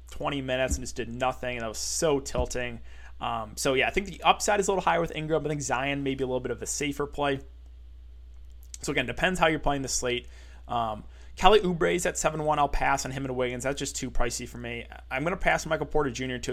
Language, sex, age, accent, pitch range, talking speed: English, male, 20-39, American, 120-155 Hz, 255 wpm